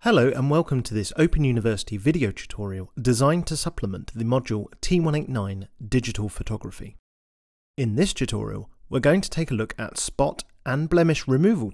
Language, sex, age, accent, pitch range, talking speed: English, male, 40-59, British, 105-145 Hz, 160 wpm